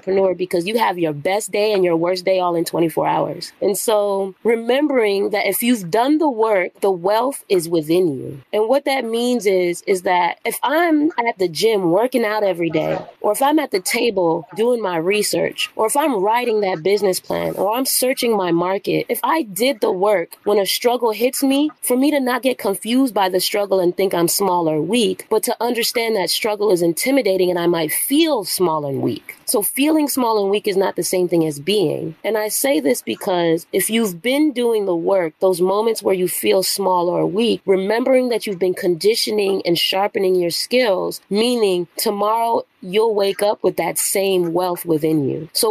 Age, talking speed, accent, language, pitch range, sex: 20-39, 205 wpm, American, English, 180-230 Hz, female